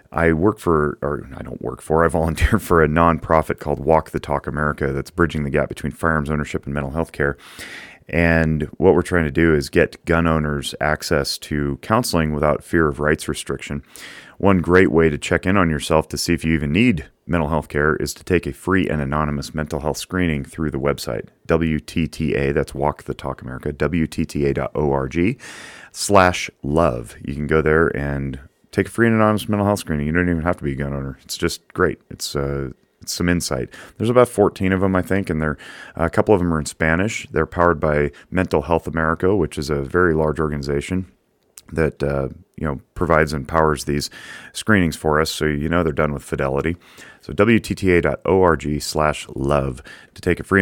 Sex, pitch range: male, 75-85 Hz